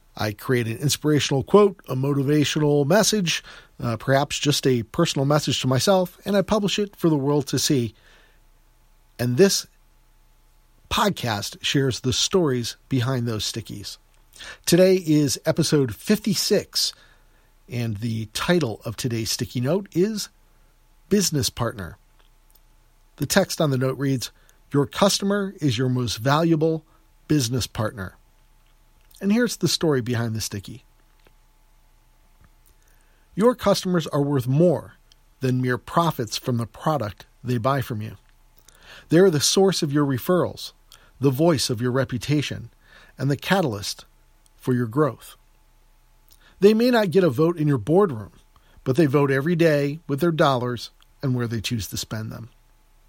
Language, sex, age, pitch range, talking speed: English, male, 50-69, 120-170 Hz, 140 wpm